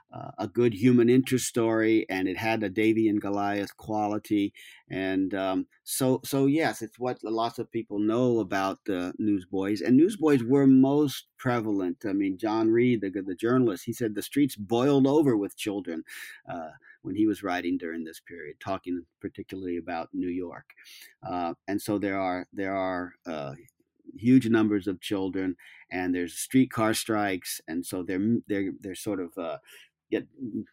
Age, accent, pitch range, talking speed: 50-69, American, 100-125 Hz, 170 wpm